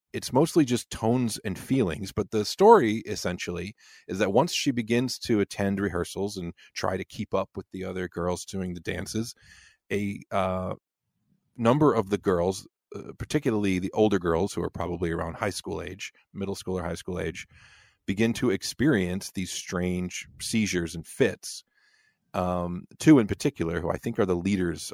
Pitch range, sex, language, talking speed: 90-115 Hz, male, English, 175 wpm